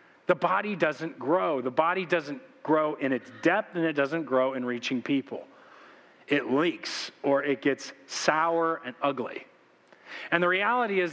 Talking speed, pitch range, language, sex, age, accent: 160 wpm, 130-170 Hz, English, male, 40-59, American